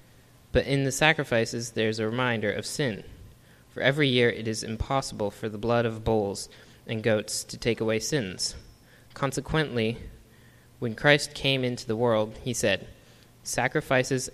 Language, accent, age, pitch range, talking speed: English, American, 20-39, 110-125 Hz, 150 wpm